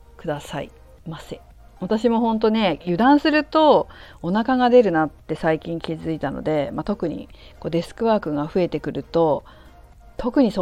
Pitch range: 155-225 Hz